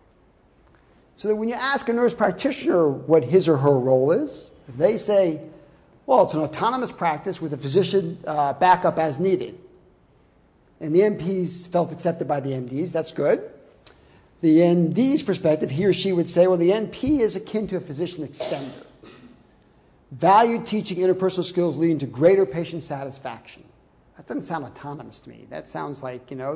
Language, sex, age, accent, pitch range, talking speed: English, male, 50-69, American, 150-220 Hz, 170 wpm